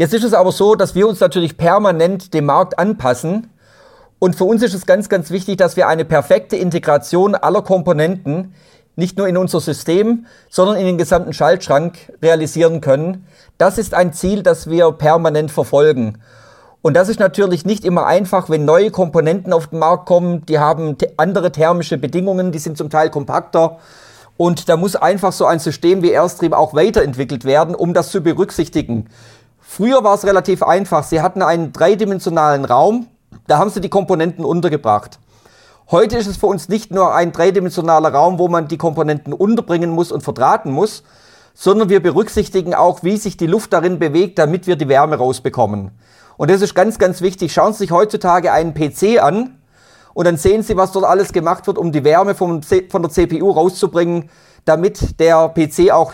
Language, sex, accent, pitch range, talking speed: German, male, German, 155-190 Hz, 185 wpm